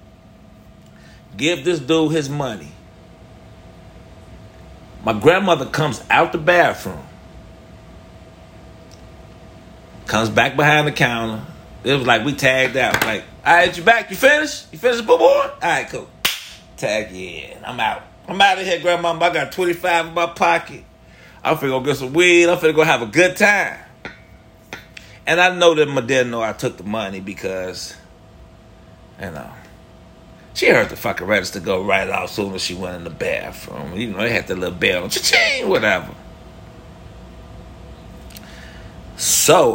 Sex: male